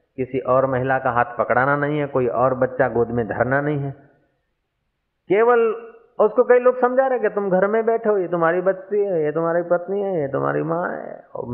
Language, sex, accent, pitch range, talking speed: Hindi, male, native, 125-200 Hz, 220 wpm